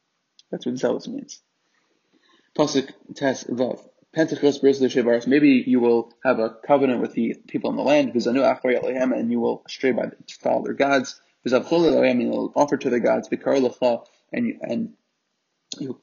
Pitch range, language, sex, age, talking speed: 115-135 Hz, English, male, 20-39, 130 wpm